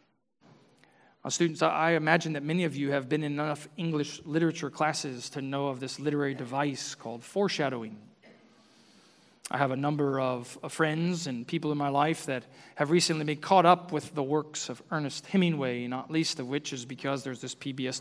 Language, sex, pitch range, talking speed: English, male, 135-175 Hz, 185 wpm